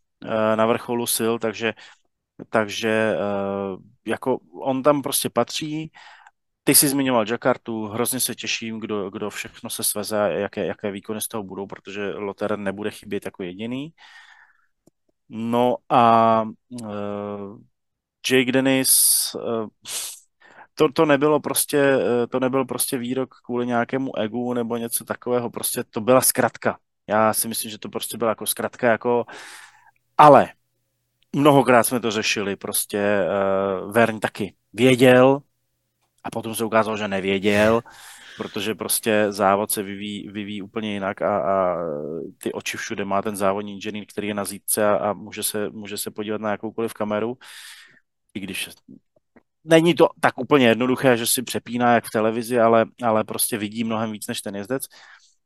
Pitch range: 105-125 Hz